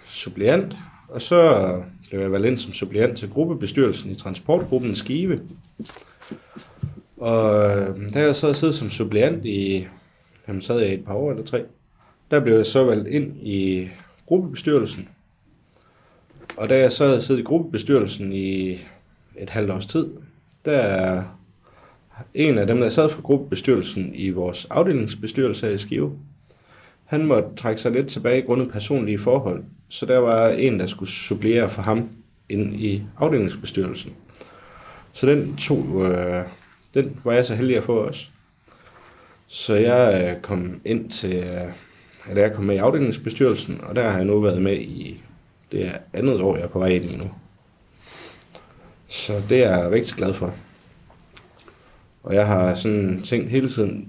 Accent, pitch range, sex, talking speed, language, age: native, 95-130 Hz, male, 150 wpm, Danish, 30-49